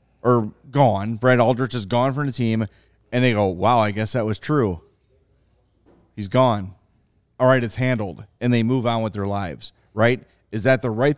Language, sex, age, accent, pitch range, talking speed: English, male, 30-49, American, 110-140 Hz, 195 wpm